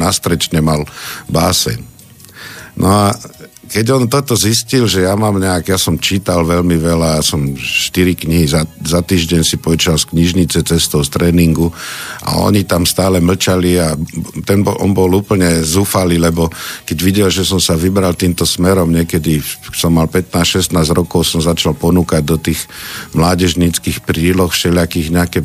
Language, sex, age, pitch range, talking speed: Slovak, male, 50-69, 85-95 Hz, 160 wpm